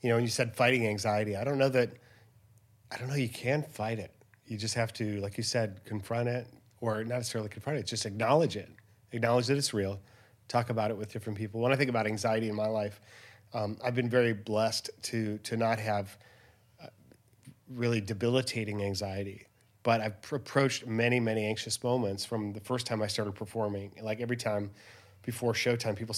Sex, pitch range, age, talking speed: male, 110-125 Hz, 30-49, 195 wpm